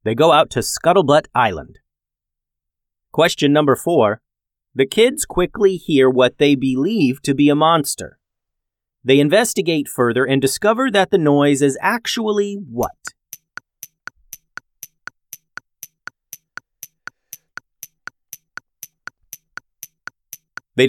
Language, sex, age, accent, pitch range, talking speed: English, male, 30-49, American, 110-150 Hz, 90 wpm